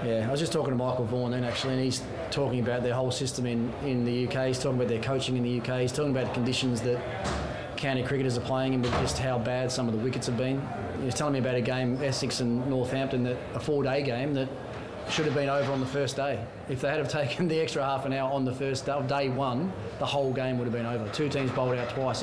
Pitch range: 125-145 Hz